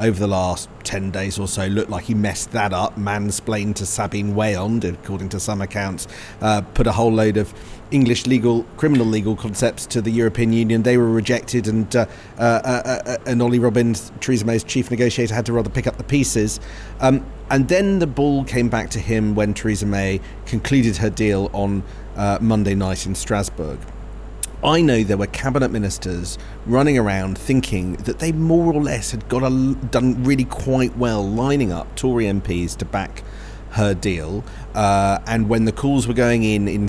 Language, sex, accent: English, male, British